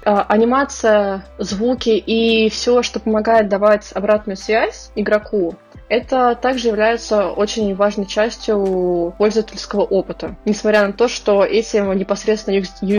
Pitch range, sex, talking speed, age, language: 190-220 Hz, female, 115 wpm, 20-39, Russian